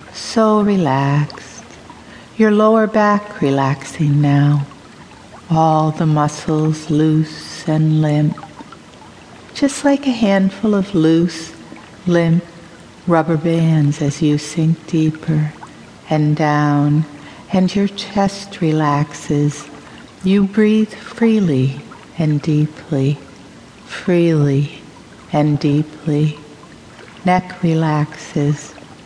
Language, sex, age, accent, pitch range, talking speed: English, female, 60-79, American, 150-185 Hz, 85 wpm